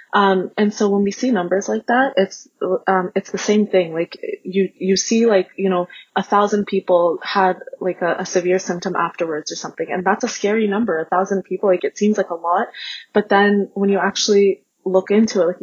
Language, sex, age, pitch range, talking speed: English, female, 20-39, 180-205 Hz, 220 wpm